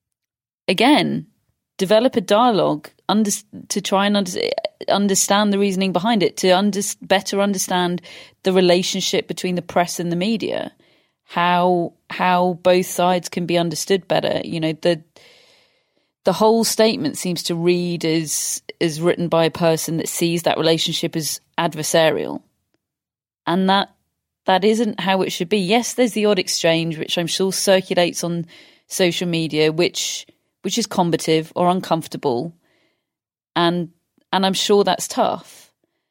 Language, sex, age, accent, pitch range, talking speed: English, female, 30-49, British, 160-195 Hz, 145 wpm